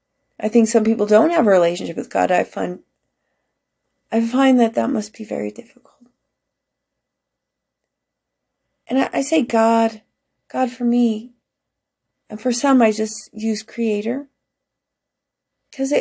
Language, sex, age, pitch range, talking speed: English, female, 30-49, 195-240 Hz, 135 wpm